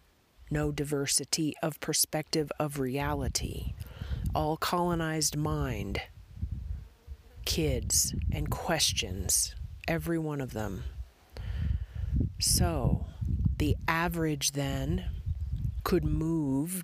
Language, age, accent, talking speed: English, 40-59, American, 80 wpm